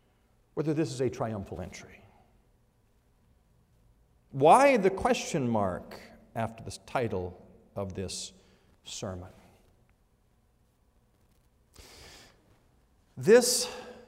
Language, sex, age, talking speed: English, male, 50-69, 70 wpm